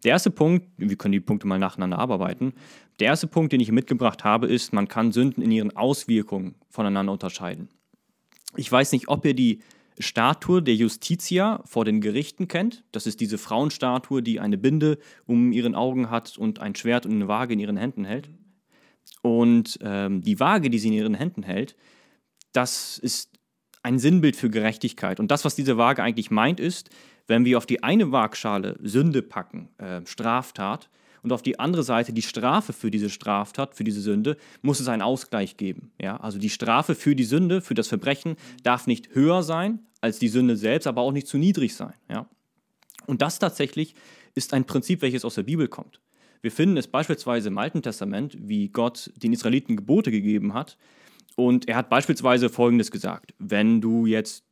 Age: 30-49